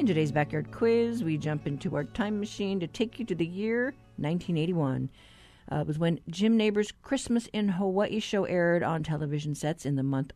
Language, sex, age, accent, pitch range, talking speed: English, female, 50-69, American, 155-210 Hz, 195 wpm